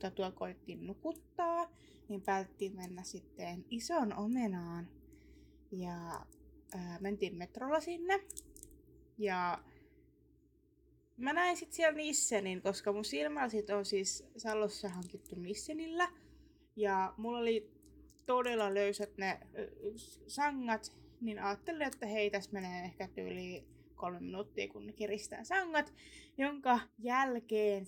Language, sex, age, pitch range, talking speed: Finnish, female, 20-39, 190-270 Hz, 105 wpm